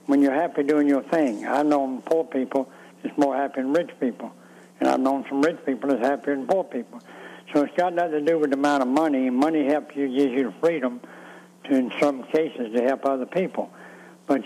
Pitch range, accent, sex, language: 135-155 Hz, American, male, English